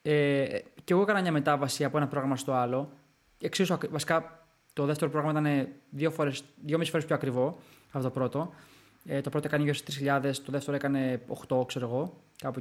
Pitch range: 140-170 Hz